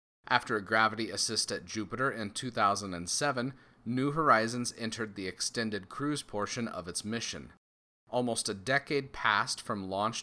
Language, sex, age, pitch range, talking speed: English, male, 30-49, 100-120 Hz, 140 wpm